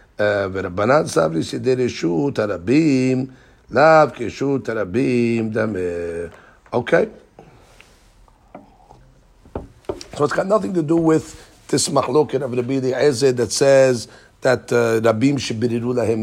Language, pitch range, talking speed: English, 115-150 Hz, 95 wpm